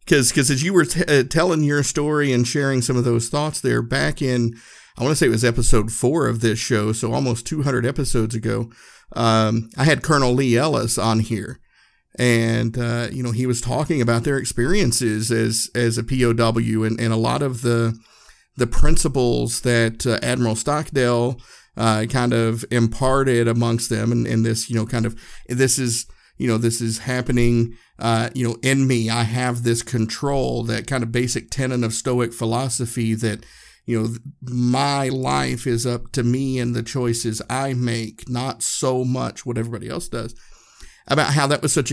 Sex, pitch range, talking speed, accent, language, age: male, 115-130 Hz, 185 wpm, American, English, 50-69